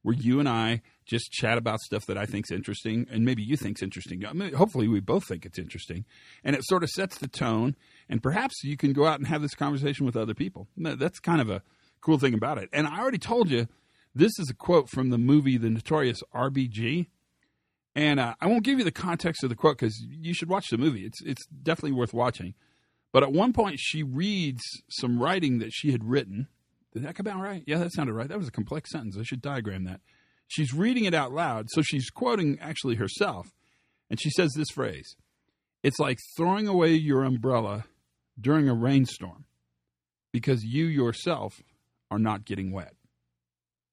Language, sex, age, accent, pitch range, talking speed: English, male, 40-59, American, 110-160 Hz, 205 wpm